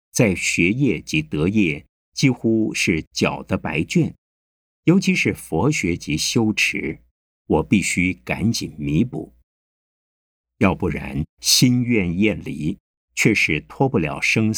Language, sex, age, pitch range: Chinese, male, 50-69, 70-105 Hz